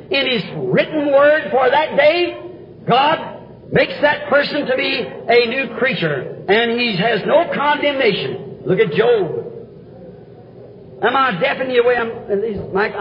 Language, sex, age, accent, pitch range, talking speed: English, male, 50-69, American, 215-315 Hz, 155 wpm